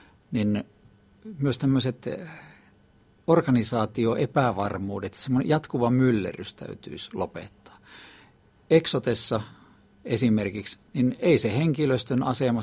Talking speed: 70 wpm